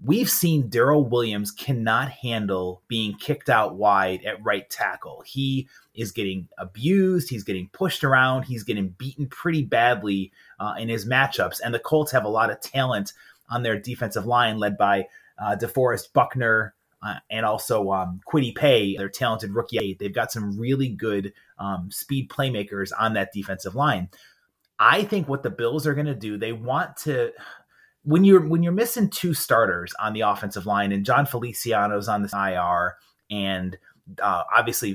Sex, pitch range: male, 100-145 Hz